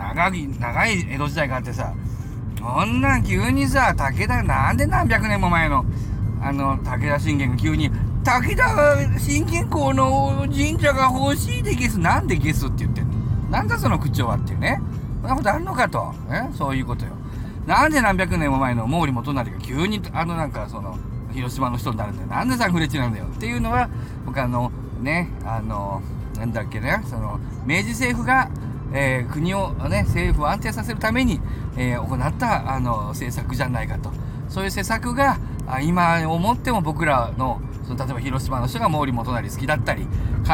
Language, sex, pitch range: Japanese, male, 115-135 Hz